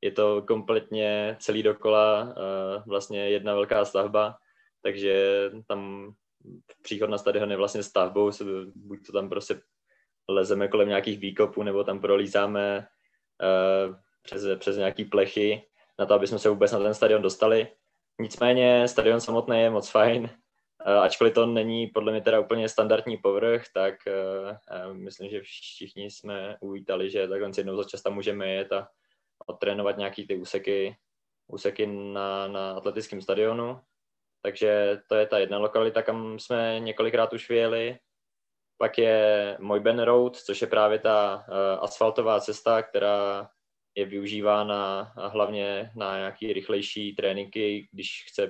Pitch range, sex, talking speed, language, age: 100-115 Hz, male, 140 wpm, Czech, 20-39